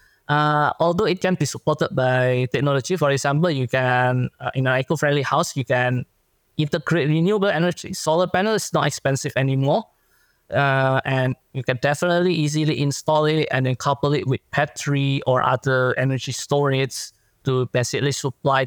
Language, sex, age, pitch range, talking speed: English, male, 20-39, 130-155 Hz, 160 wpm